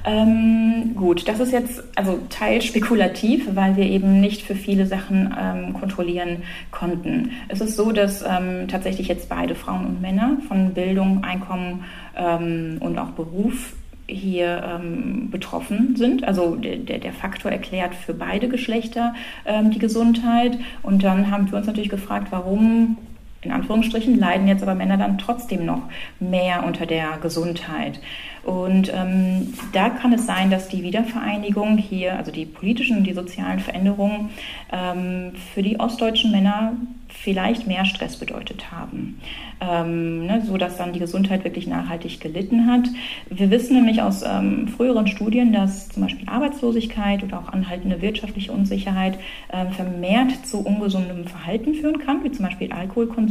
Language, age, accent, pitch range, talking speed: German, 30-49, German, 185-230 Hz, 155 wpm